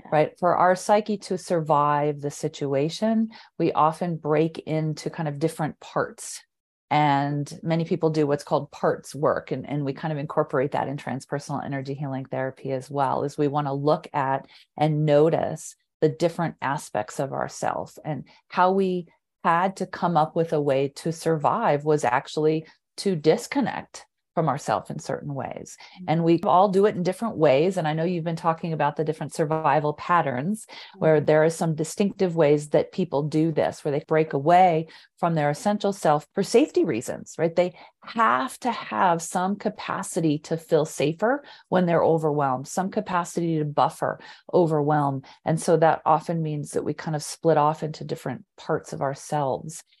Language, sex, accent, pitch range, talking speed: English, female, American, 150-180 Hz, 175 wpm